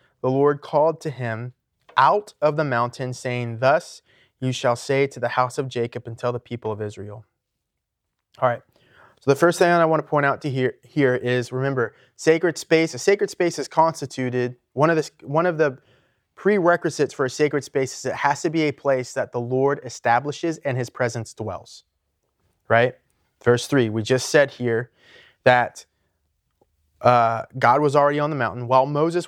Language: English